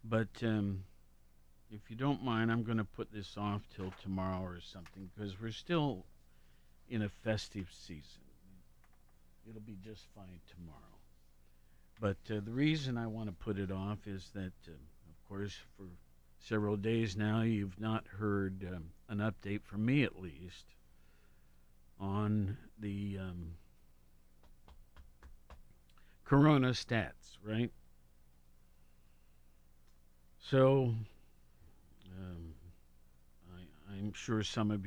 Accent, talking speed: American, 120 wpm